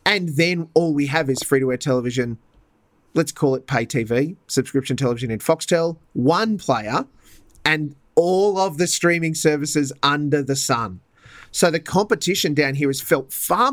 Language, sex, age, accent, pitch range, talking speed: English, male, 30-49, Australian, 130-160 Hz, 155 wpm